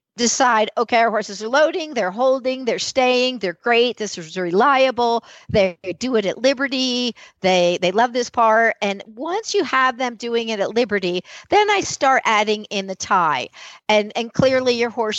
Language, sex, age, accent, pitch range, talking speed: English, female, 50-69, American, 195-245 Hz, 180 wpm